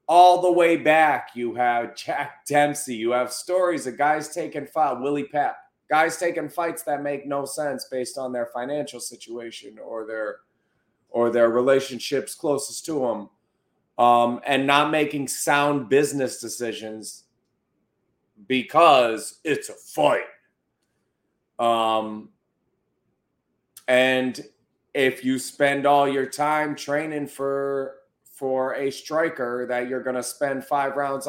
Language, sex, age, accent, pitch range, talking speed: English, male, 30-49, American, 125-145 Hz, 130 wpm